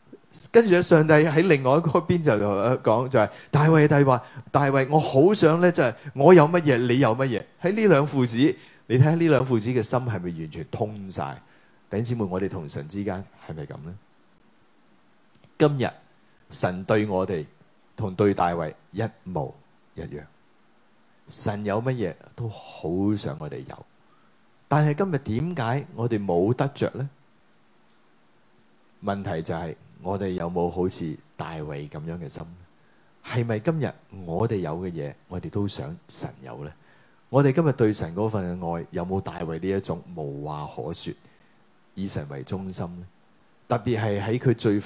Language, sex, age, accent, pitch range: Chinese, male, 30-49, native, 95-130 Hz